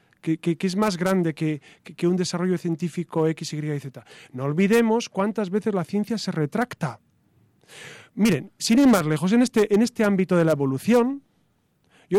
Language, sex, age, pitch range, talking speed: Spanish, male, 40-59, 160-205 Hz, 185 wpm